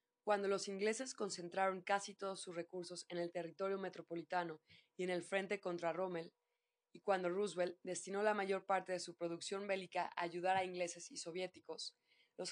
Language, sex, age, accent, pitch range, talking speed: Spanish, female, 20-39, Mexican, 175-195 Hz, 175 wpm